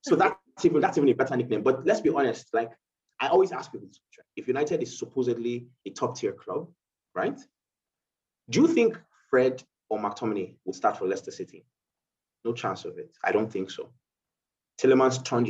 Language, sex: English, male